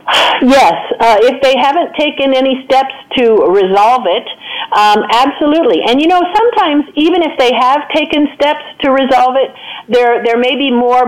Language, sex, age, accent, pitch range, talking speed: English, female, 50-69, American, 200-265 Hz, 170 wpm